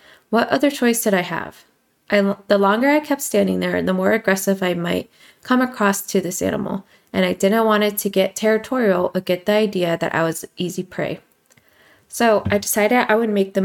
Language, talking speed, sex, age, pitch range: English, 205 wpm, female, 20-39, 180-210 Hz